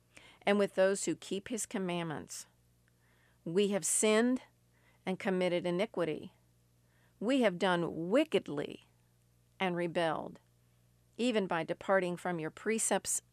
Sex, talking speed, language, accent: female, 115 wpm, English, American